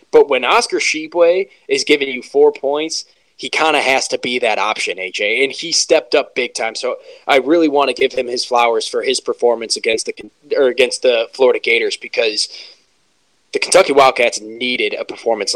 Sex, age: male, 20-39